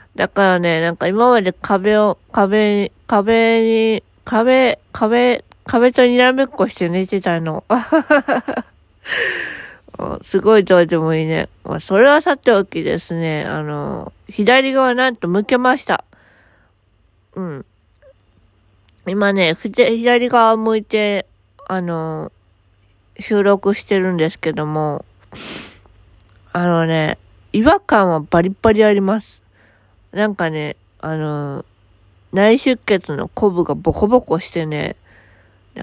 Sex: female